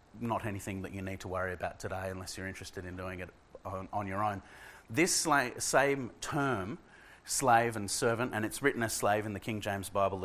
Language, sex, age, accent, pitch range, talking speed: English, male, 30-49, Australian, 100-120 Hz, 210 wpm